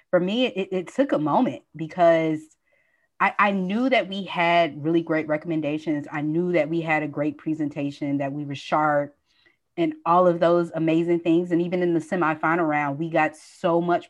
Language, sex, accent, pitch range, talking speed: English, female, American, 150-175 Hz, 190 wpm